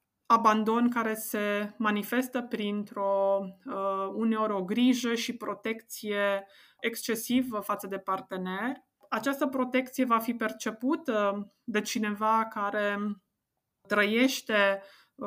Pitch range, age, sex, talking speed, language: 205-245 Hz, 20-39, female, 90 wpm, Romanian